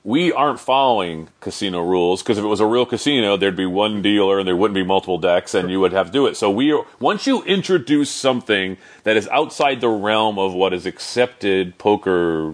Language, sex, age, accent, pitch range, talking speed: English, male, 40-59, American, 95-120 Hz, 220 wpm